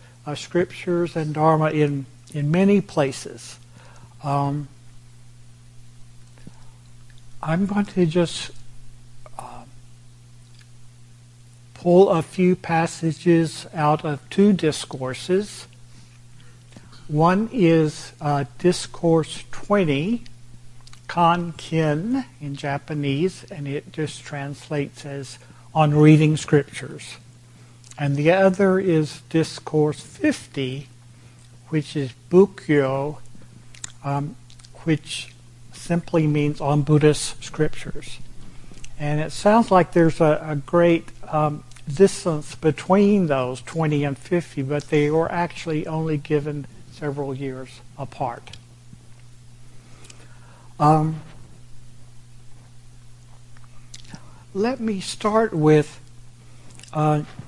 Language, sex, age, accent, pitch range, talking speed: English, male, 60-79, American, 120-155 Hz, 90 wpm